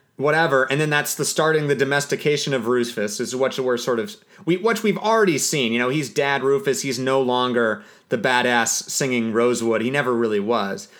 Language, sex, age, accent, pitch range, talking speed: English, male, 30-49, American, 125-175 Hz, 195 wpm